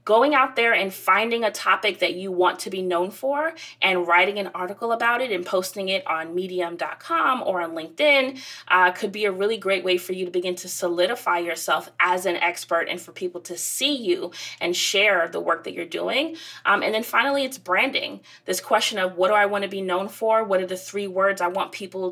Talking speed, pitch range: 225 wpm, 180-215 Hz